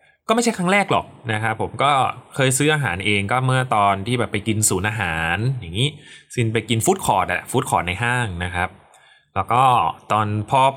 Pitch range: 105-150 Hz